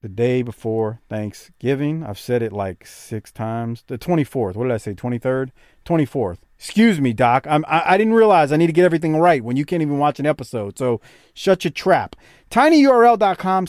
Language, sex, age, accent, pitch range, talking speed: English, male, 40-59, American, 120-195 Hz, 195 wpm